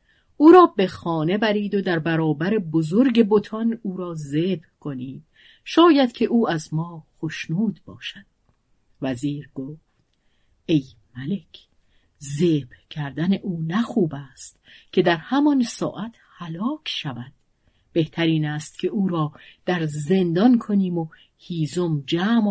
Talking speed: 125 wpm